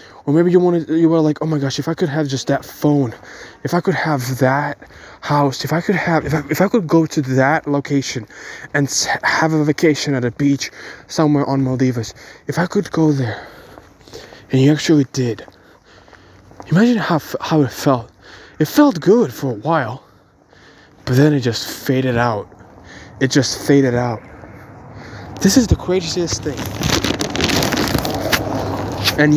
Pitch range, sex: 125-160 Hz, male